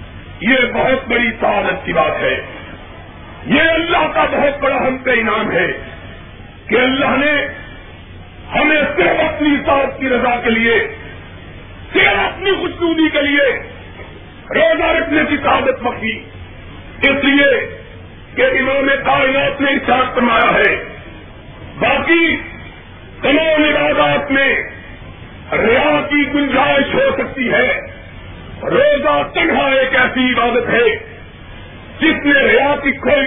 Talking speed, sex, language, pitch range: 120 wpm, male, Urdu, 260-315 Hz